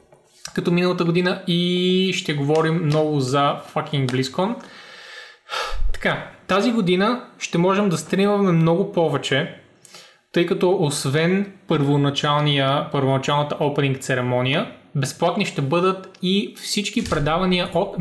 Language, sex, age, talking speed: Bulgarian, male, 20-39, 105 wpm